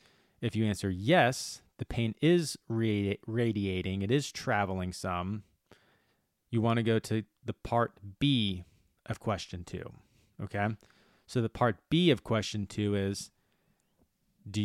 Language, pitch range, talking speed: English, 100-120 Hz, 135 wpm